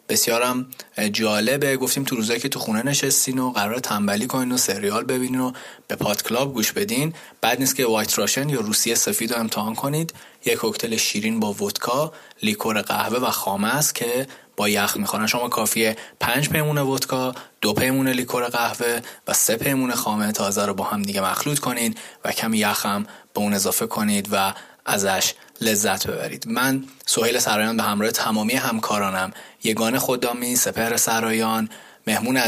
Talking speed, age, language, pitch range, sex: 170 wpm, 20-39, Persian, 105-130 Hz, male